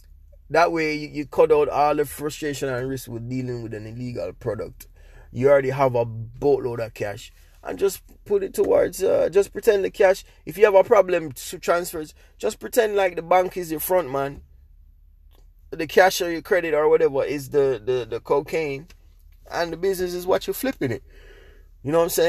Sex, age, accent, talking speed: male, 20-39, Jamaican, 200 wpm